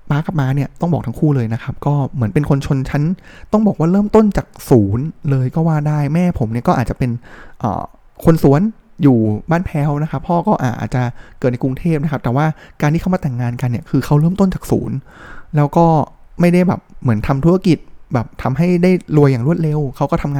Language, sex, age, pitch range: Thai, male, 20-39, 130-165 Hz